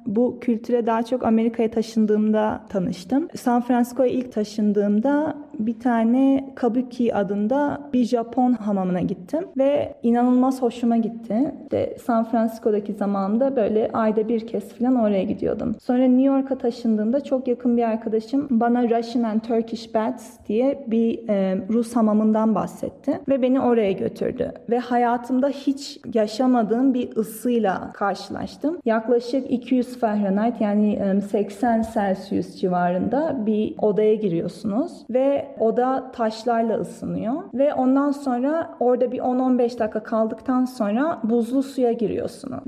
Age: 30-49